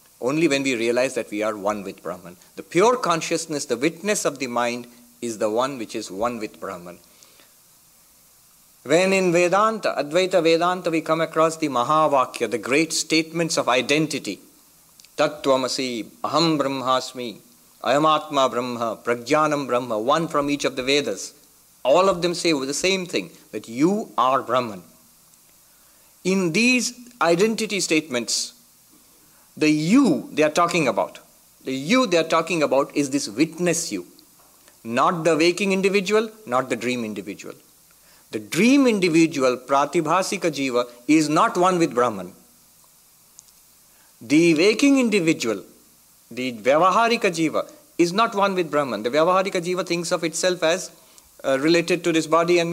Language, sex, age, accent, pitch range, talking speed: English, male, 60-79, Indian, 130-185 Hz, 145 wpm